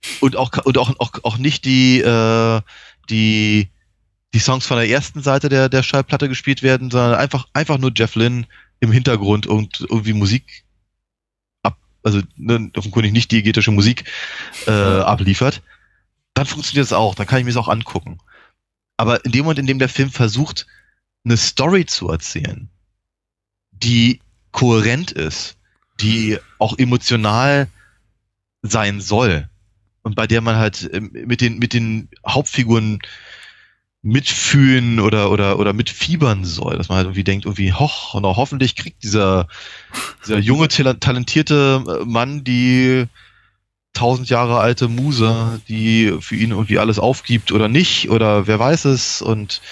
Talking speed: 150 wpm